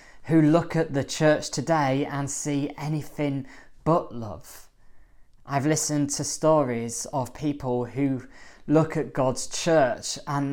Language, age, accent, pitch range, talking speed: English, 20-39, British, 125-150 Hz, 130 wpm